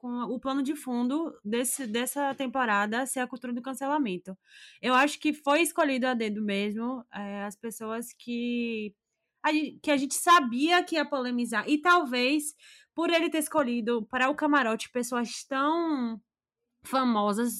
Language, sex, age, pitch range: Portuguese, female, 20-39, 220-280 Hz